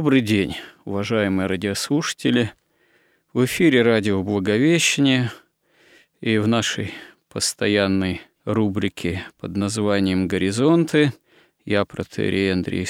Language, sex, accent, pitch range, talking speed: Russian, male, native, 100-125 Hz, 90 wpm